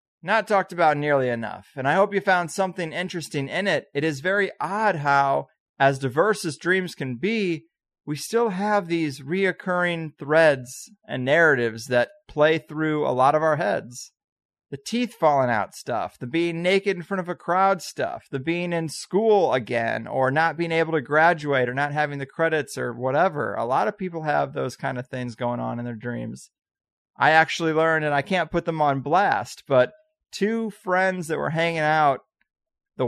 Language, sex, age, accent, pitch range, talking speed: English, male, 30-49, American, 140-175 Hz, 190 wpm